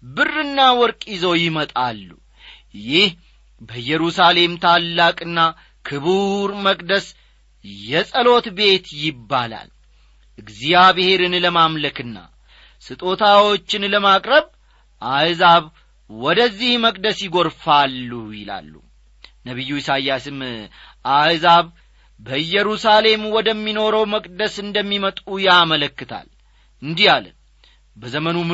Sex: male